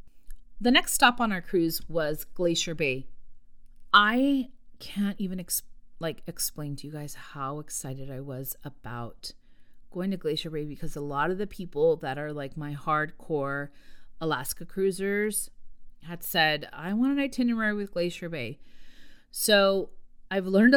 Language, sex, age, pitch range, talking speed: English, female, 30-49, 145-185 Hz, 145 wpm